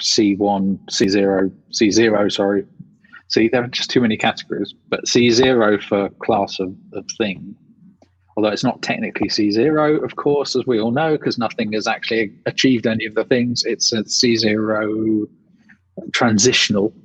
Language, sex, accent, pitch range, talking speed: English, male, British, 105-125 Hz, 150 wpm